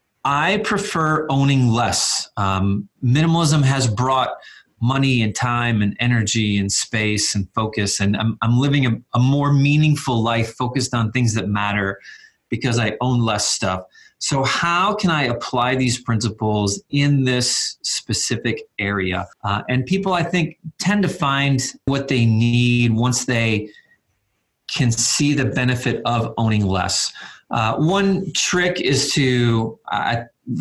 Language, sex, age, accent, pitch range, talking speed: English, male, 30-49, American, 115-145 Hz, 145 wpm